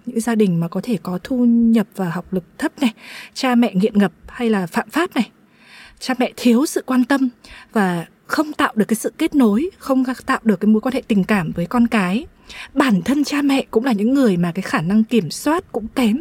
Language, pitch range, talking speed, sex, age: Vietnamese, 195-255 Hz, 240 wpm, female, 20-39